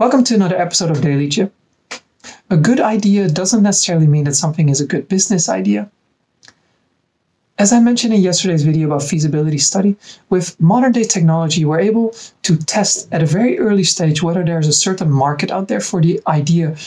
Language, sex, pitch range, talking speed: English, male, 160-200 Hz, 185 wpm